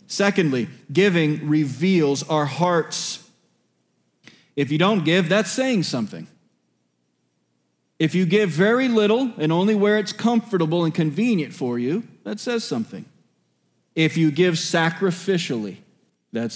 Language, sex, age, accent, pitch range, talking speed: English, male, 40-59, American, 160-250 Hz, 125 wpm